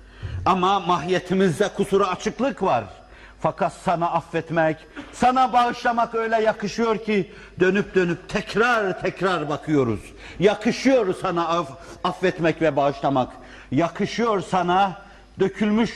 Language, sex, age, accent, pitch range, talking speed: Turkish, male, 50-69, native, 115-180 Hz, 100 wpm